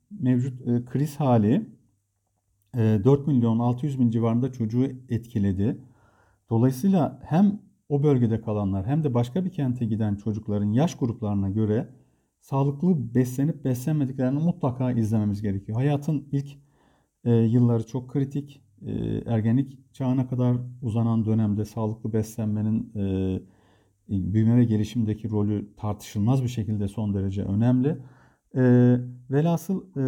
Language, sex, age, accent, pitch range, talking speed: Turkish, male, 50-69, native, 115-145 Hz, 120 wpm